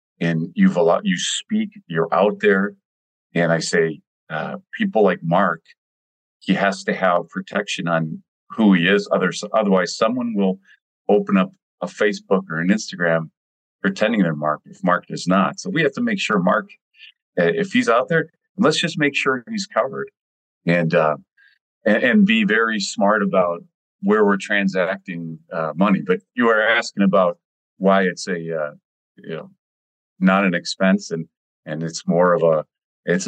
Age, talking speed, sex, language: 40-59, 170 wpm, male, English